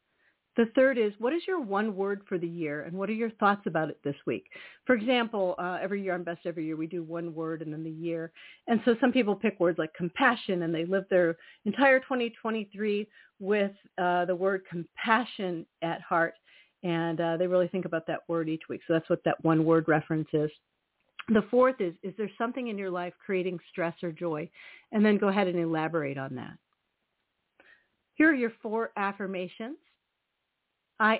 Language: English